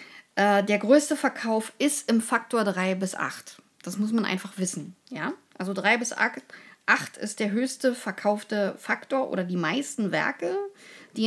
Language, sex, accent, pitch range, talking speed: German, female, German, 195-260 Hz, 155 wpm